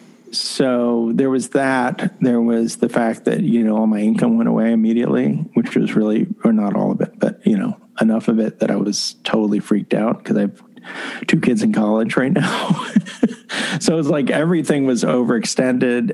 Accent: American